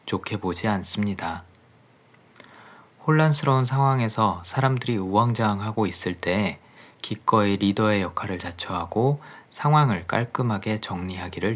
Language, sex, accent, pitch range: Korean, male, native, 95-125 Hz